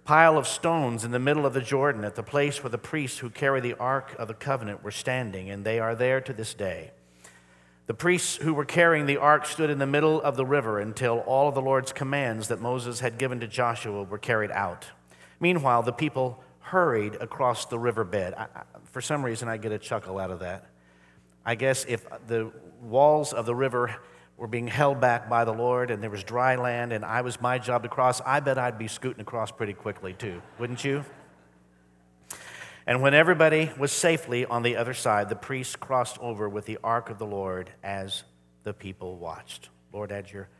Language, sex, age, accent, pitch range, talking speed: English, male, 50-69, American, 100-135 Hz, 210 wpm